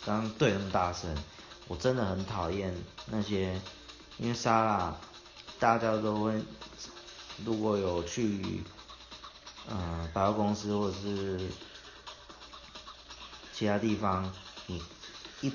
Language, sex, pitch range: Chinese, male, 90-115 Hz